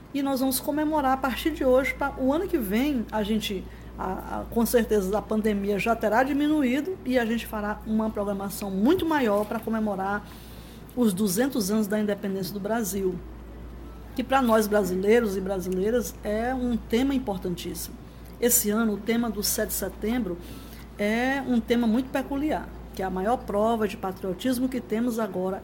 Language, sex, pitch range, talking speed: Portuguese, female, 195-250 Hz, 170 wpm